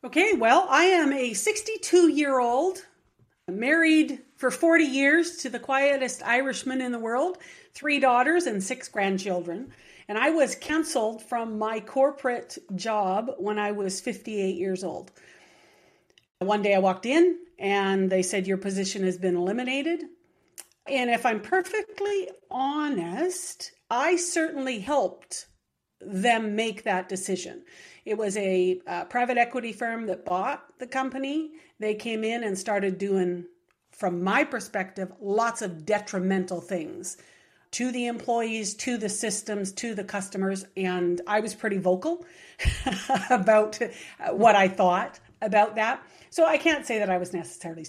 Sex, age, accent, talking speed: female, 50-69, American, 140 wpm